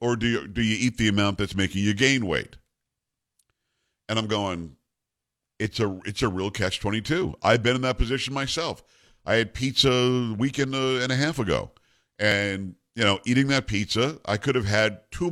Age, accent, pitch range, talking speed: 50-69, American, 105-135 Hz, 200 wpm